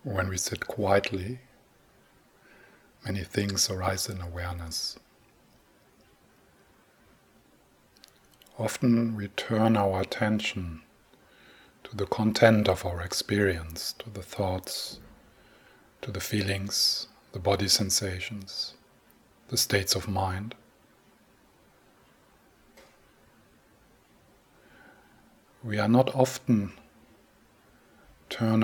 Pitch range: 95-110 Hz